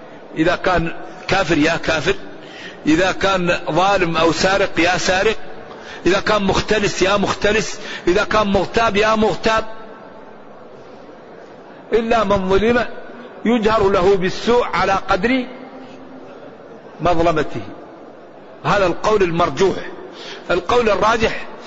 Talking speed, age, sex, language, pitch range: 100 wpm, 50-69, male, Arabic, 180-220 Hz